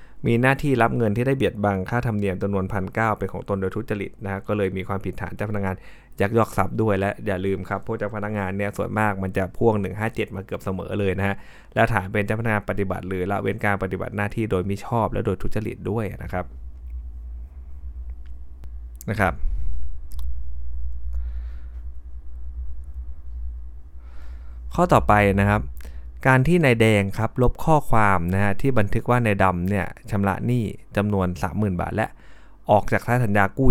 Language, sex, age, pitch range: Thai, male, 20-39, 90-110 Hz